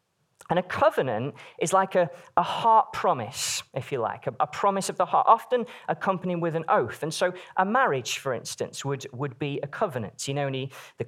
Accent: British